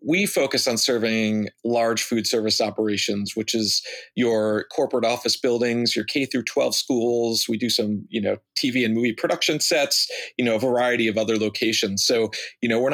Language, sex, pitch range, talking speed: English, male, 110-130 Hz, 185 wpm